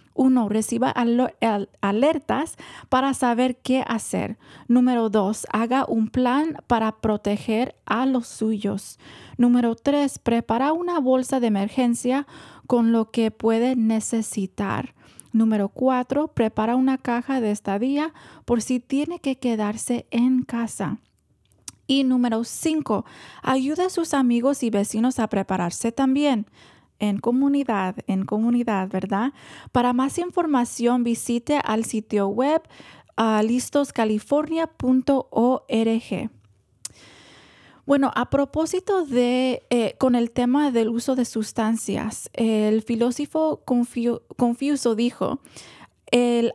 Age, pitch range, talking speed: 20-39, 220-265 Hz, 110 wpm